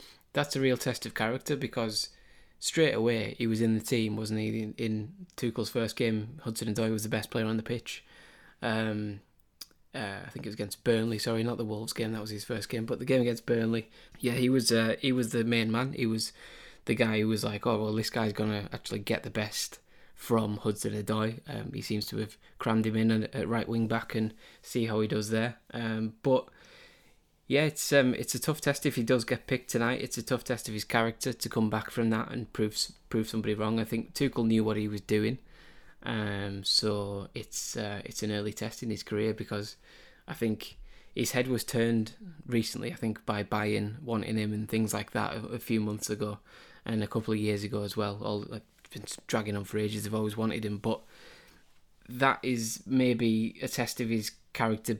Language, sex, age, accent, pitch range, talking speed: English, male, 20-39, British, 105-120 Hz, 220 wpm